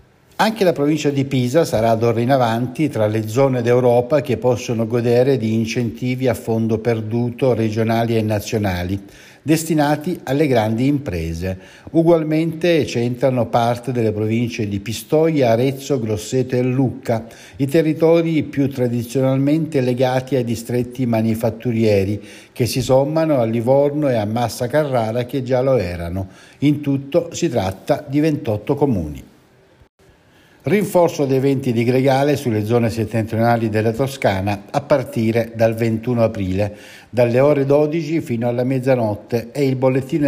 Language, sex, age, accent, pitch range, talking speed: Italian, male, 60-79, native, 110-140 Hz, 135 wpm